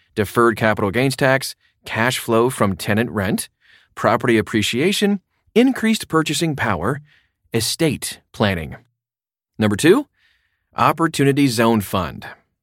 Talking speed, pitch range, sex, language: 100 wpm, 105-140 Hz, male, English